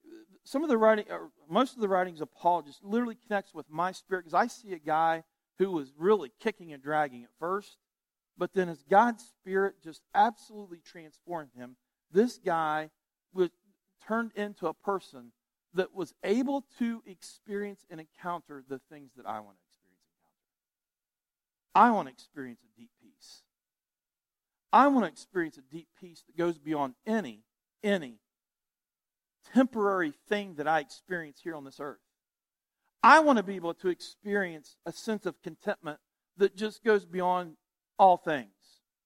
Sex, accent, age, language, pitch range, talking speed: male, American, 40-59, English, 155-210 Hz, 150 wpm